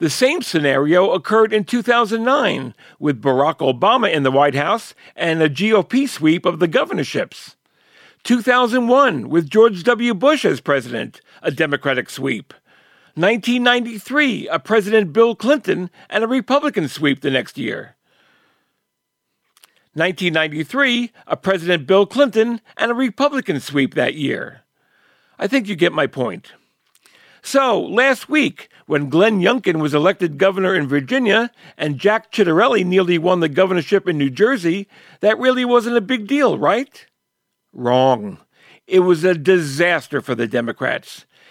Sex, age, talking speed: male, 50-69, 135 wpm